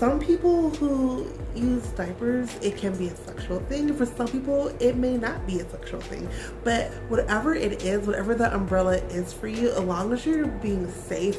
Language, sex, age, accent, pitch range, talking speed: English, female, 20-39, American, 180-230 Hz, 195 wpm